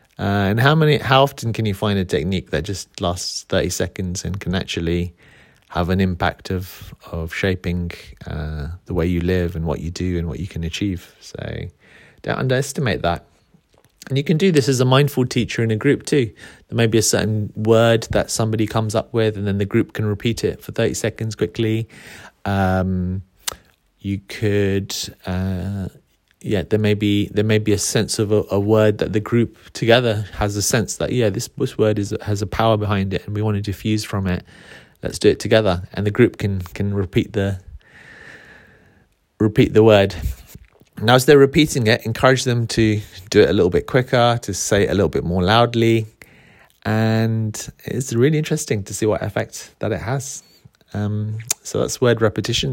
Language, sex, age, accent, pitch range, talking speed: English, male, 30-49, British, 95-115 Hz, 195 wpm